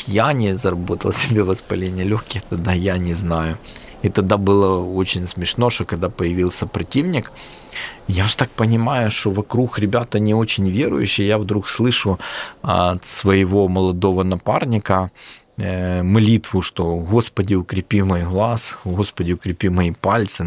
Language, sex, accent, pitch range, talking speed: Ukrainian, male, native, 90-105 Hz, 135 wpm